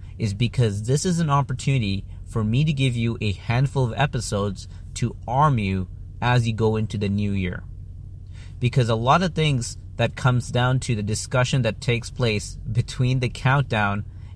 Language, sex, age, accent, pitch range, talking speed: English, male, 30-49, American, 100-120 Hz, 175 wpm